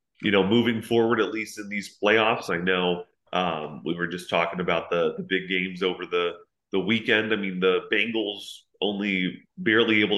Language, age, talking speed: English, 30-49, 190 wpm